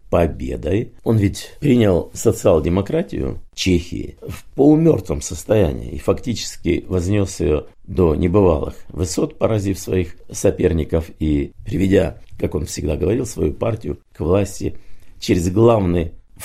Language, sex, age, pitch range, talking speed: Russian, male, 50-69, 80-105 Hz, 115 wpm